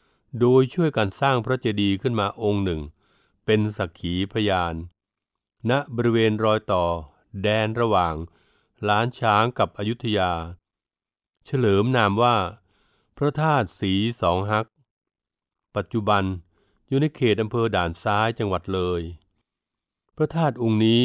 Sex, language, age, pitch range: male, Thai, 60-79, 100-125 Hz